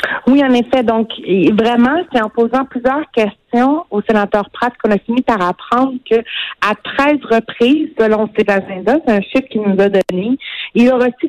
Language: French